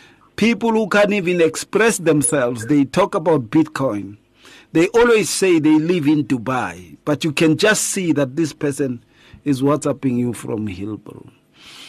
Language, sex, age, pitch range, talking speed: English, male, 50-69, 120-160 Hz, 150 wpm